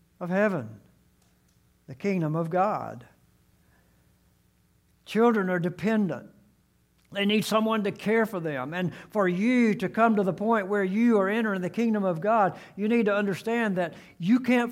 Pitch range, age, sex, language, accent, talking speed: 145-200 Hz, 60-79, male, English, American, 160 wpm